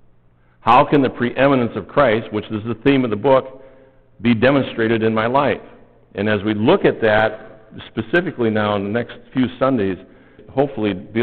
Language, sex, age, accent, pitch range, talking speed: English, male, 60-79, American, 100-130 Hz, 175 wpm